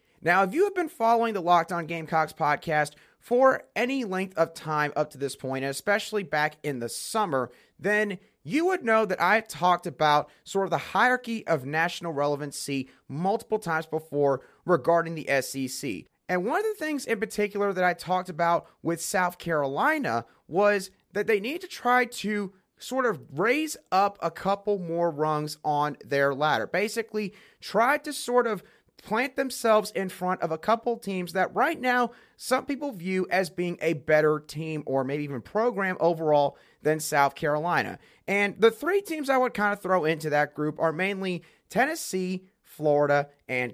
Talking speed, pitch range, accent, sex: 175 wpm, 155-215 Hz, American, male